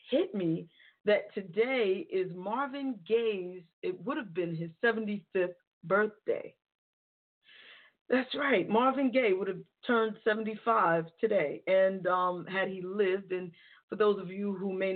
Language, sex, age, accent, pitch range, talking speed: English, female, 40-59, American, 185-240 Hz, 140 wpm